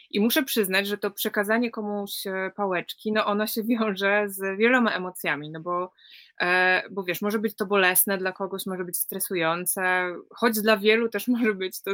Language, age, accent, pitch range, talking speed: Polish, 20-39, native, 190-225 Hz, 160 wpm